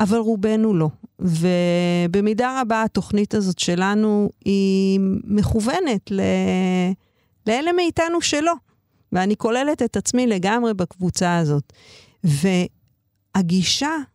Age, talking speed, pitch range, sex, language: 50-69, 90 wpm, 175-230 Hz, female, Hebrew